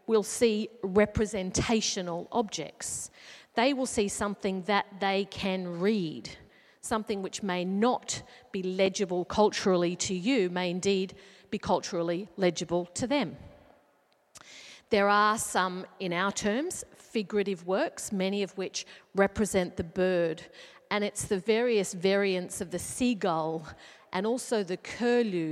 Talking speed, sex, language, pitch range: 125 wpm, female, English, 180-210 Hz